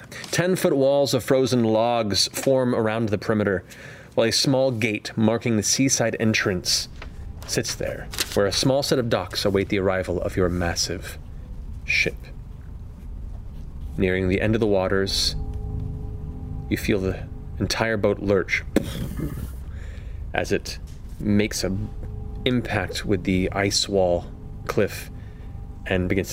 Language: English